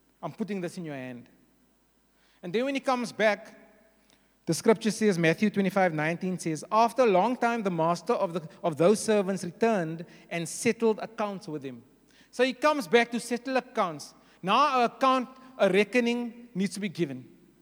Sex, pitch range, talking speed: male, 165-235 Hz, 175 wpm